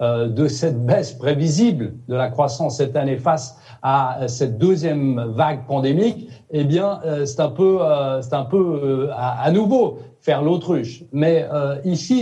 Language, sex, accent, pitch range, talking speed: French, male, French, 140-200 Hz, 140 wpm